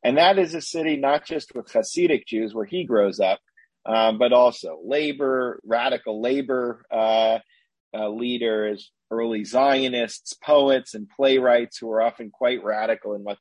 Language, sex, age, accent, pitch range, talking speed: English, male, 40-59, American, 110-145 Hz, 155 wpm